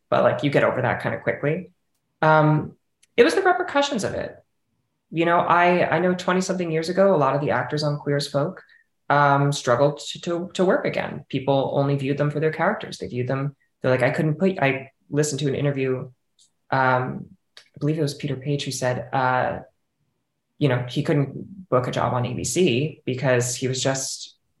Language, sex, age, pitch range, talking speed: English, female, 20-39, 125-150 Hz, 205 wpm